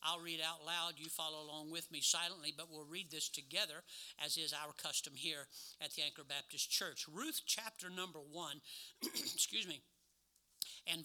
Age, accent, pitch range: 60-79, American, 145-180 Hz